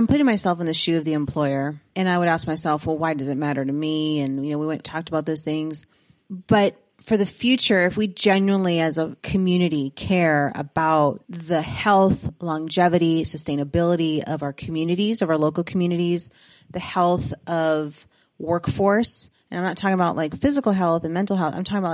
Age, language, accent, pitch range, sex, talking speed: 30-49, English, American, 165-215 Hz, female, 195 wpm